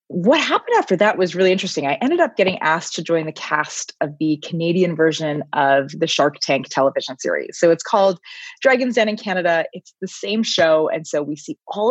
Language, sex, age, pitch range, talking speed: English, female, 30-49, 150-200 Hz, 210 wpm